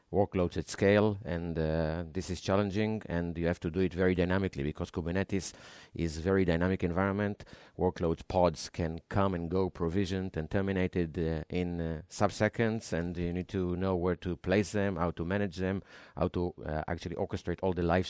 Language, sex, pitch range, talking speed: English, male, 85-95 Hz, 190 wpm